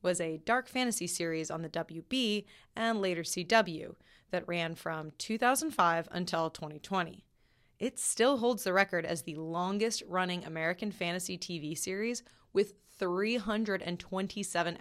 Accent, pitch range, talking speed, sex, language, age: American, 170-200 Hz, 125 wpm, female, English, 20-39